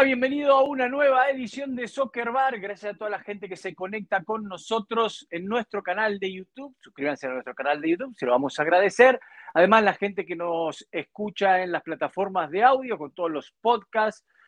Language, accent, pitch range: Spanish, Argentinian, 160-225 Hz